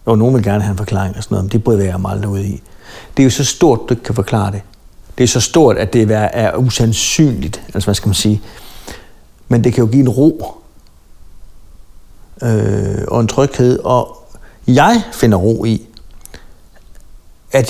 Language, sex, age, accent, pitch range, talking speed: Danish, male, 60-79, native, 100-125 Hz, 185 wpm